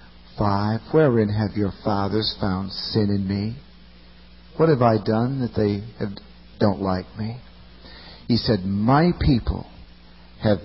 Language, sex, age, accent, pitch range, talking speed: English, male, 50-69, American, 95-120 Hz, 130 wpm